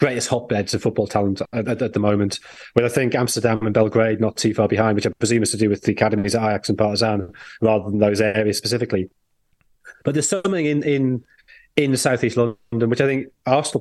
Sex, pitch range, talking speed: male, 105-125 Hz, 215 wpm